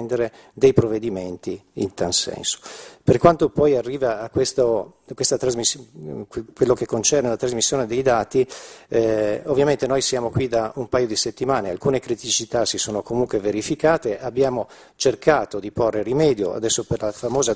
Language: Italian